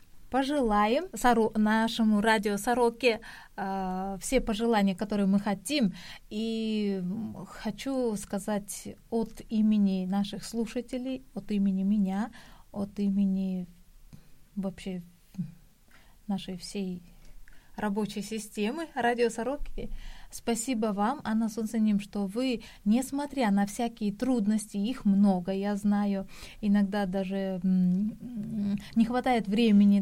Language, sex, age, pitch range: Korean, female, 20-39, 195-230 Hz